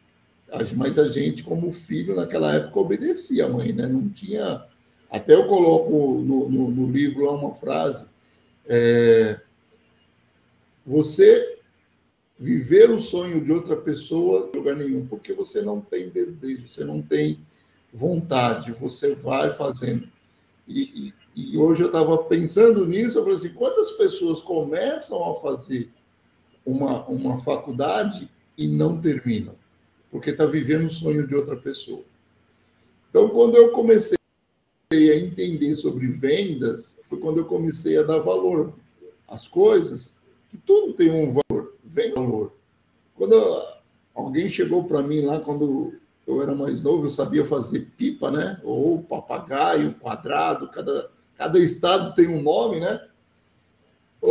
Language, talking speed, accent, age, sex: Portuguese, 140 wpm, Brazilian, 60-79, male